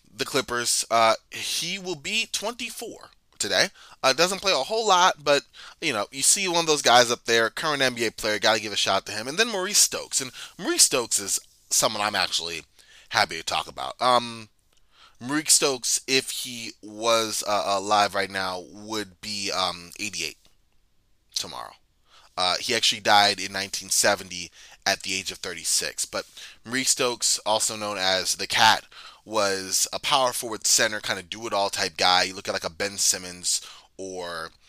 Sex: male